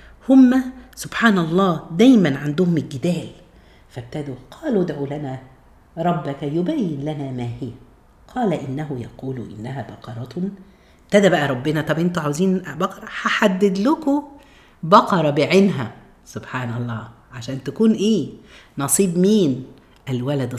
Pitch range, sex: 135-210 Hz, female